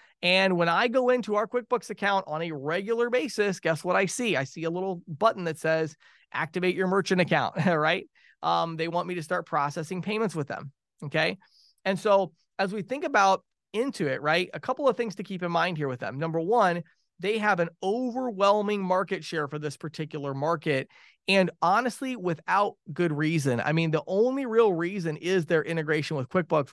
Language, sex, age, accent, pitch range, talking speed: English, male, 30-49, American, 160-210 Hz, 195 wpm